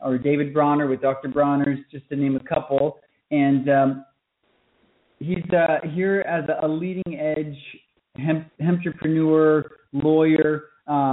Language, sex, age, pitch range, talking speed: English, male, 20-39, 135-155 Hz, 130 wpm